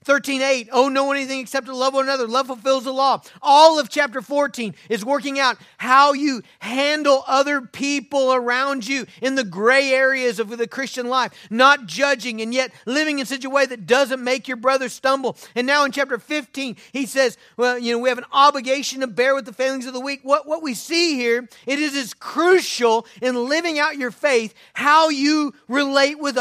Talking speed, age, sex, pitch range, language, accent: 205 wpm, 40-59, male, 245-295 Hz, English, American